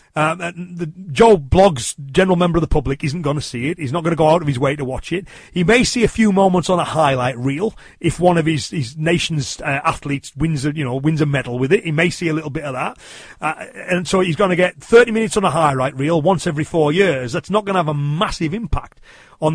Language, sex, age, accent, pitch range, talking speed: English, male, 40-59, British, 145-180 Hz, 265 wpm